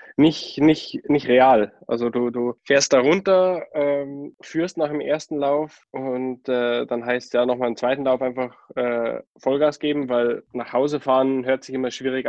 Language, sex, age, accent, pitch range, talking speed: German, male, 10-29, German, 115-130 Hz, 185 wpm